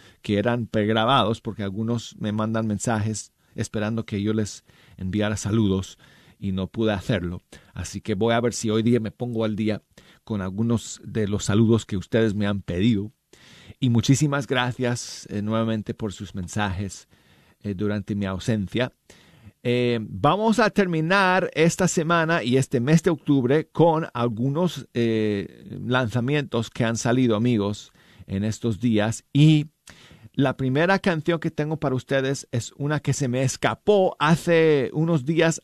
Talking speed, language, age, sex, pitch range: 145 wpm, Spanish, 40-59, male, 110-145 Hz